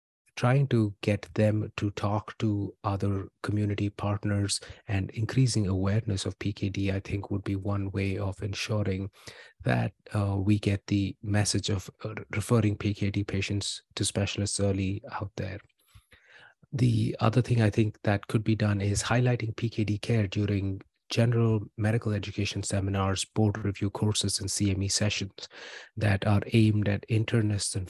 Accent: Indian